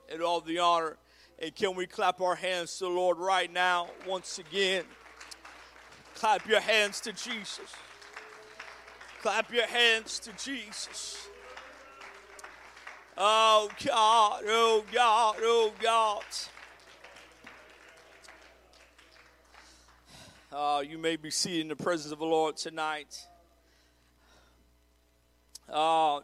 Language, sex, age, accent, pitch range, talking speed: English, male, 50-69, American, 150-180 Hz, 105 wpm